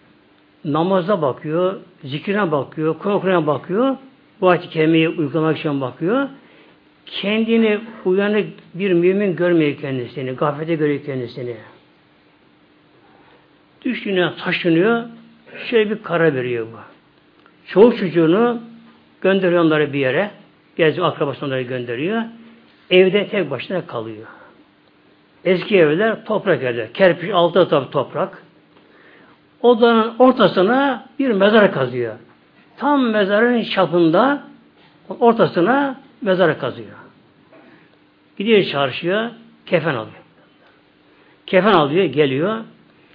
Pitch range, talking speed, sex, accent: 155-225 Hz, 90 wpm, male, native